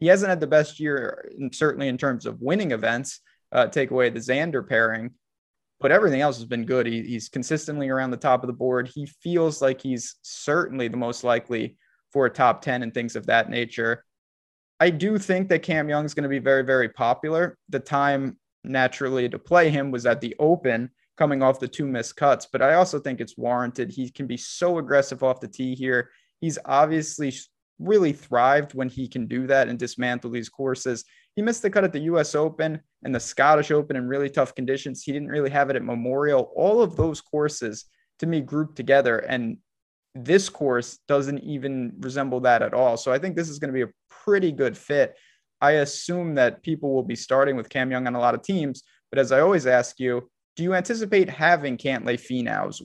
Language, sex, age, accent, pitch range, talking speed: English, male, 20-39, American, 125-150 Hz, 210 wpm